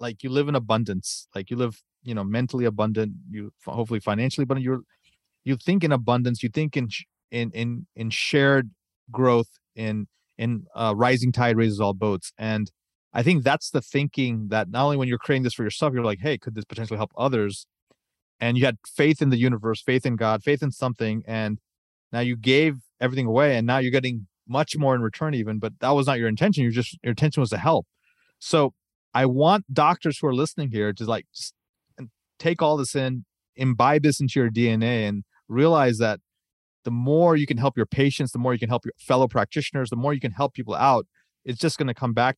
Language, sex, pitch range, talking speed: English, male, 110-140 Hz, 215 wpm